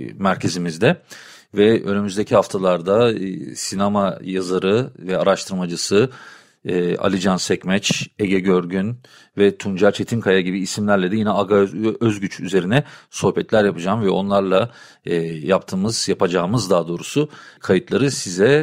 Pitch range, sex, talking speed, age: 95-110 Hz, male, 105 wpm, 40-59